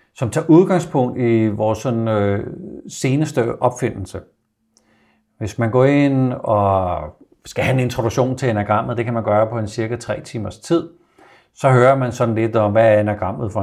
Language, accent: Danish, native